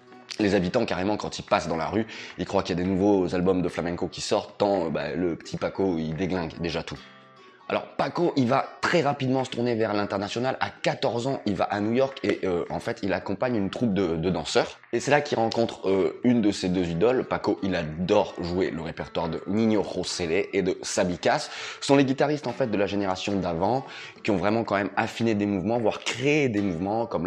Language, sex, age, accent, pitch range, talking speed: French, male, 20-39, French, 95-125 Hz, 230 wpm